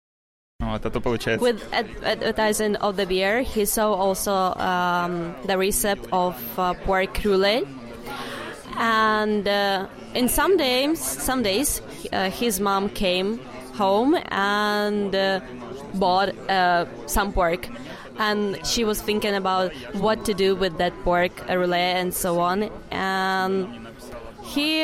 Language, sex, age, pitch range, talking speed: English, female, 20-39, 185-210 Hz, 120 wpm